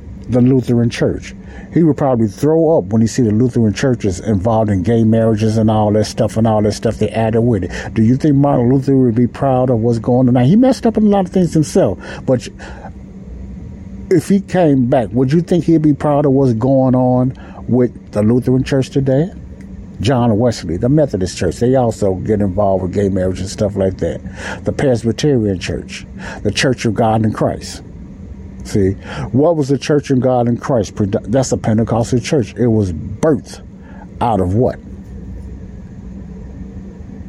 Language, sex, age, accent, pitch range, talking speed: English, male, 60-79, American, 95-135 Hz, 185 wpm